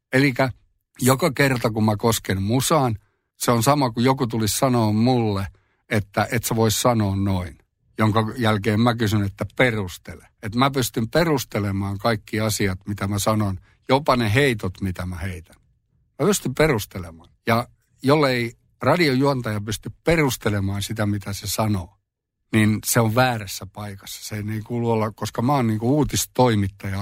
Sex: male